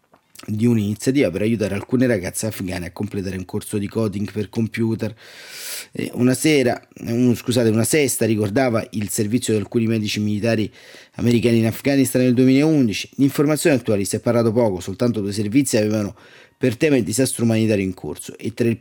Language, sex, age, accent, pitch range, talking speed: Italian, male, 30-49, native, 105-130 Hz, 170 wpm